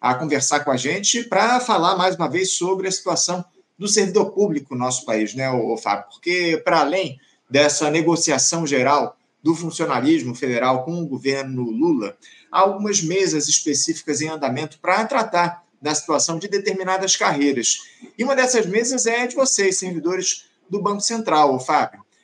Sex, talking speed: male, 165 wpm